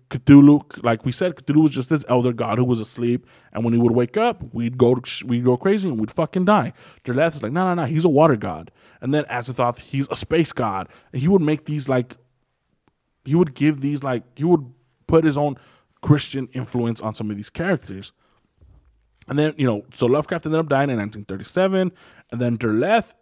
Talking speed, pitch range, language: 210 wpm, 115-155 Hz, English